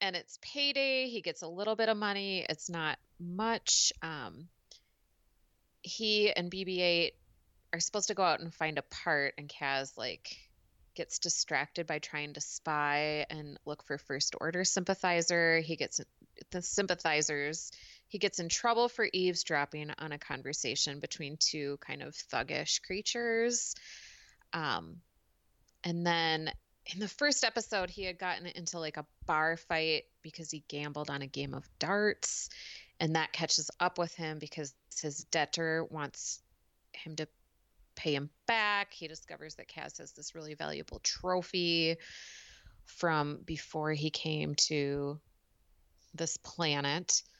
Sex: female